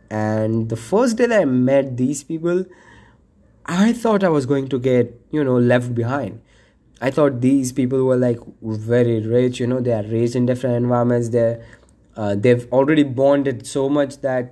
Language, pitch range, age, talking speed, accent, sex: English, 115-140 Hz, 20-39, 180 wpm, Indian, male